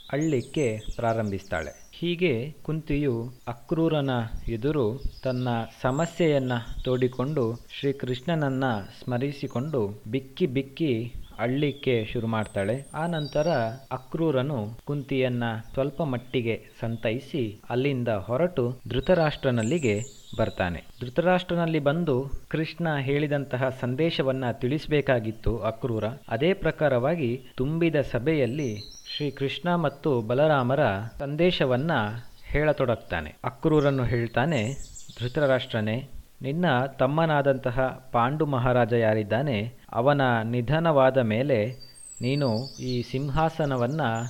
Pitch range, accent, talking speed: 120-150 Hz, native, 80 wpm